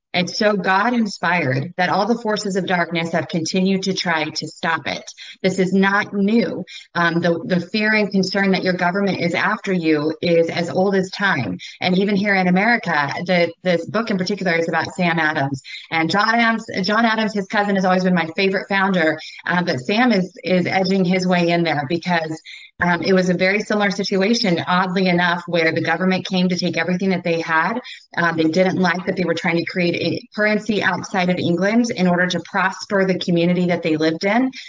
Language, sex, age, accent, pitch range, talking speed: English, female, 30-49, American, 170-200 Hz, 210 wpm